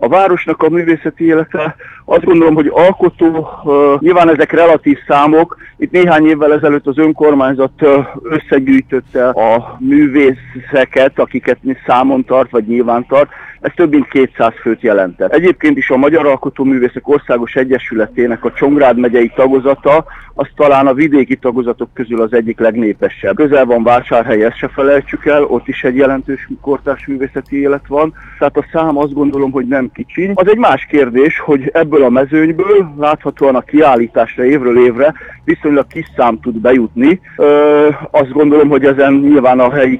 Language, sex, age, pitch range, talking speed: Hungarian, male, 50-69, 125-155 Hz, 155 wpm